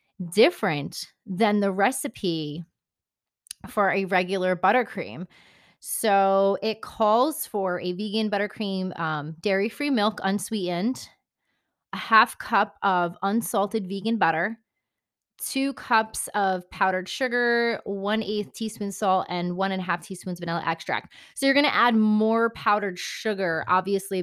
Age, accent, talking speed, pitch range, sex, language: 20-39, American, 130 wpm, 180-220 Hz, female, English